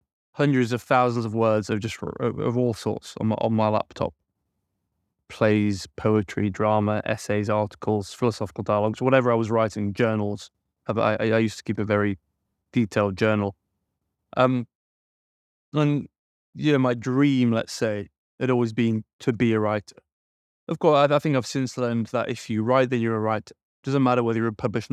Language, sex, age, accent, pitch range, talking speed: English, male, 20-39, British, 105-130 Hz, 175 wpm